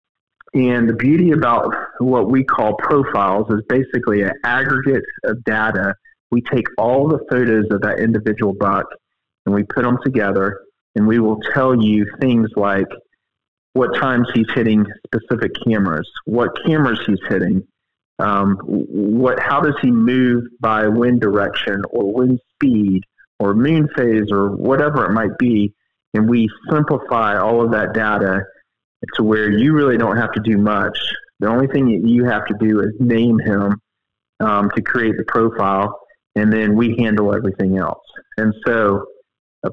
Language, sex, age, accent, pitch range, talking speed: English, male, 40-59, American, 105-125 Hz, 160 wpm